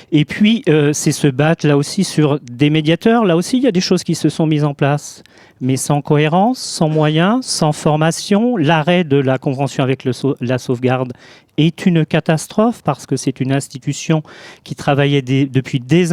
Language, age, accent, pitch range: French, 40-59, French, 135-160 Hz